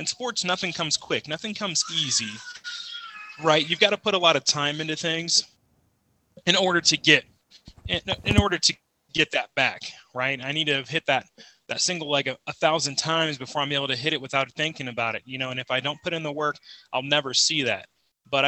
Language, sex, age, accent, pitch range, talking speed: English, male, 20-39, American, 130-165 Hz, 225 wpm